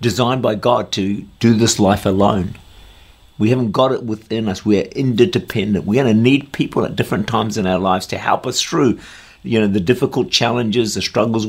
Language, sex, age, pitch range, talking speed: English, male, 50-69, 95-130 Hz, 205 wpm